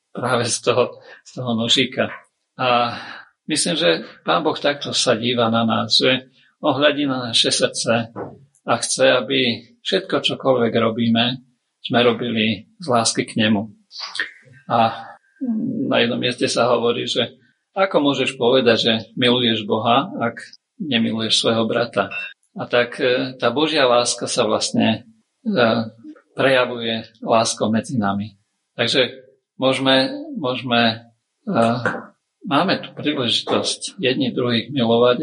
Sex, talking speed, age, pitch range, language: male, 120 wpm, 50-69, 110-130 Hz, Slovak